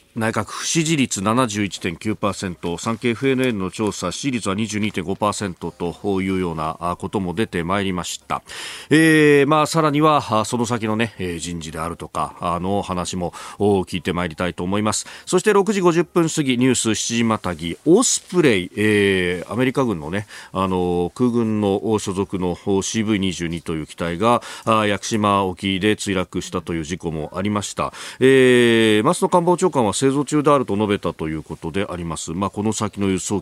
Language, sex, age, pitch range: Japanese, male, 40-59, 90-135 Hz